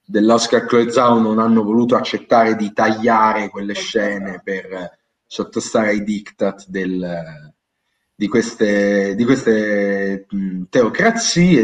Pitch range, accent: 110-150 Hz, native